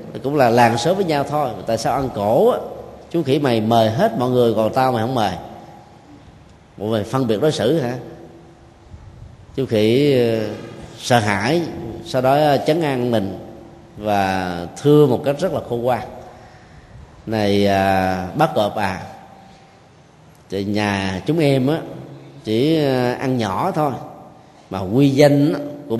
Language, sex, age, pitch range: Vietnamese, male, 20-39, 105-140 Hz